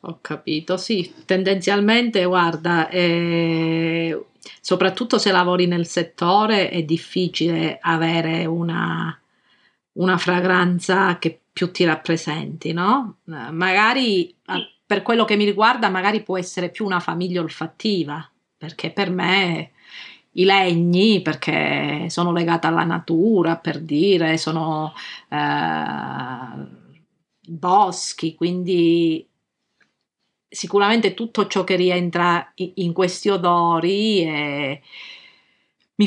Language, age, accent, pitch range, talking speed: Italian, 40-59, native, 165-195 Hz, 100 wpm